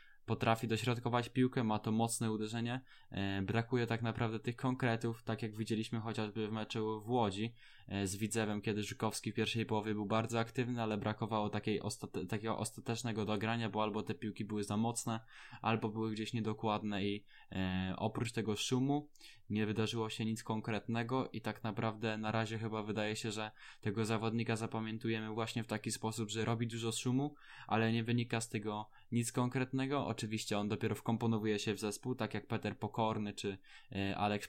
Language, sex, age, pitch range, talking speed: Polish, male, 10-29, 105-115 Hz, 165 wpm